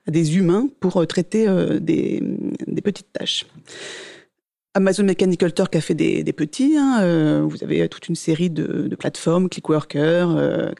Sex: female